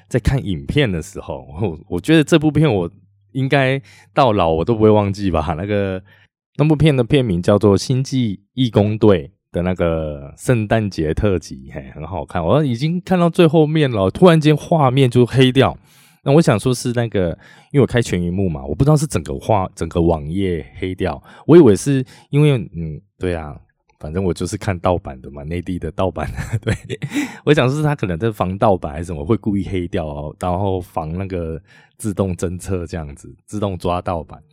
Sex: male